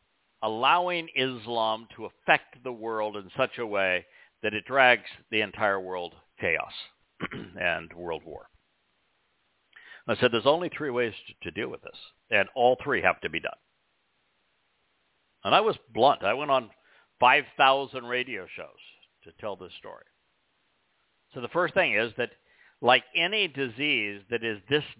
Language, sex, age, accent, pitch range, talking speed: English, male, 60-79, American, 110-140 Hz, 150 wpm